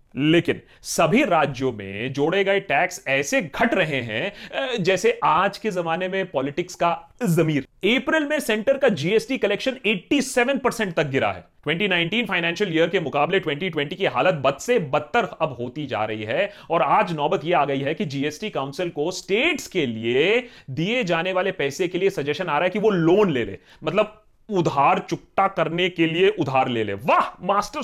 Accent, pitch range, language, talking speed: native, 135-210 Hz, Hindi, 190 wpm